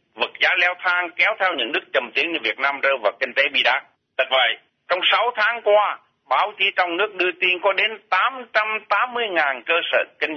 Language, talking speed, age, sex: Vietnamese, 215 wpm, 60-79, male